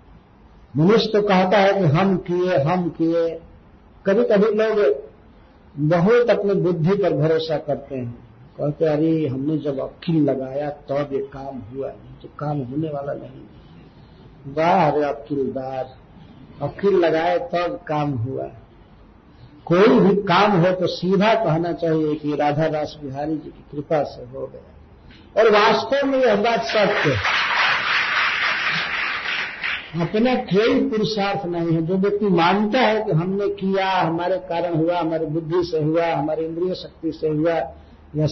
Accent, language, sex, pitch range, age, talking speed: native, Hindi, male, 145-195 Hz, 50-69, 145 wpm